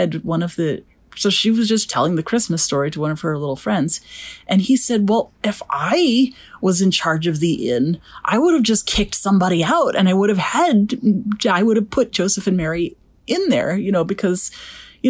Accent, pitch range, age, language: American, 170-235 Hz, 30-49, English